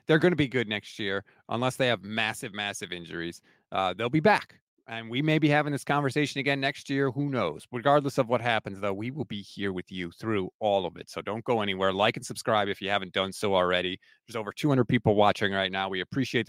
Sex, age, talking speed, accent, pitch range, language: male, 30-49, 240 wpm, American, 105-145 Hz, English